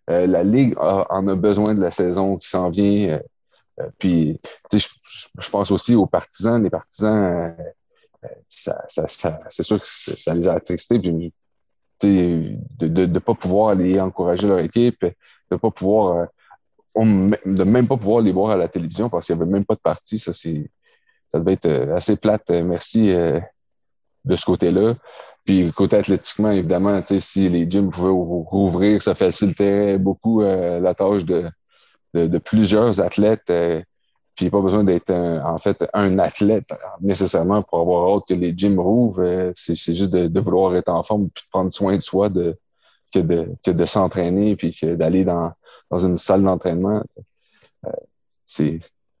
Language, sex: French, male